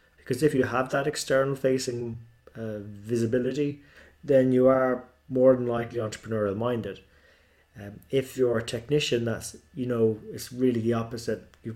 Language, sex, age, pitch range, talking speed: English, male, 30-49, 105-125 Hz, 155 wpm